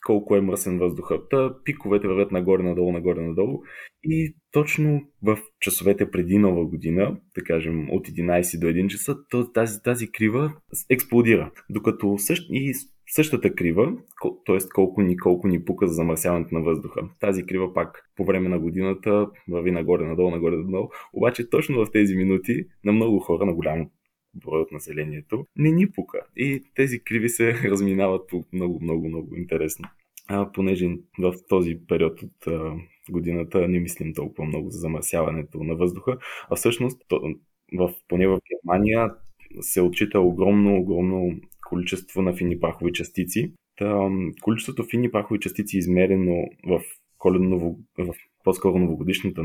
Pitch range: 90-110 Hz